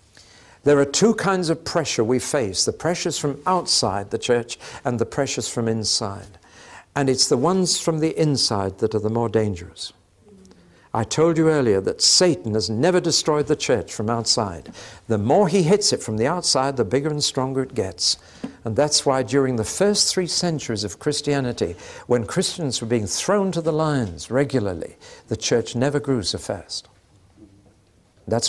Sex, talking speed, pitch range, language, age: male, 175 wpm, 100-130 Hz, English, 60-79